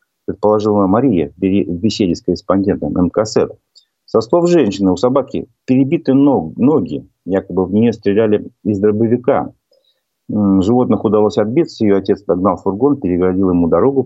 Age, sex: 40-59, male